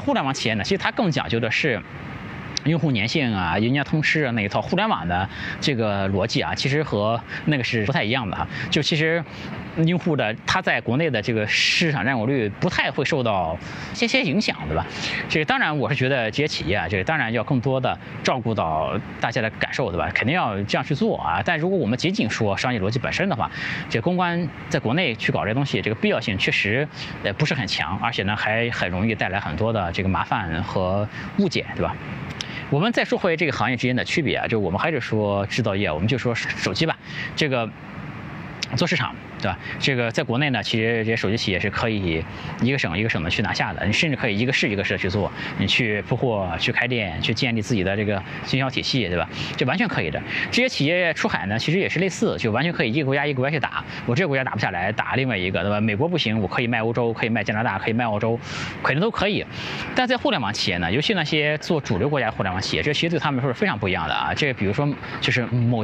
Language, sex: Chinese, male